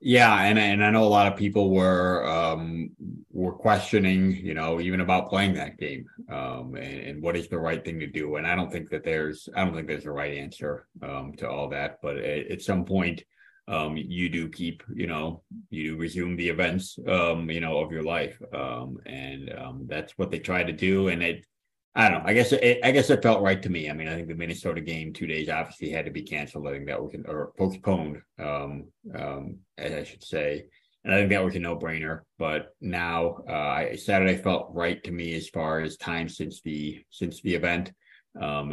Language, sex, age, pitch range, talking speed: English, male, 30-49, 80-95 Hz, 225 wpm